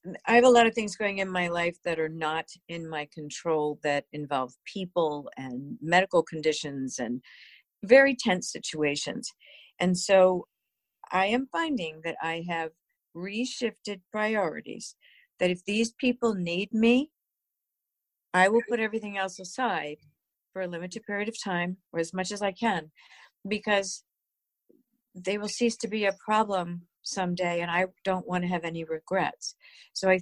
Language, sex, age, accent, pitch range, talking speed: English, female, 50-69, American, 165-205 Hz, 155 wpm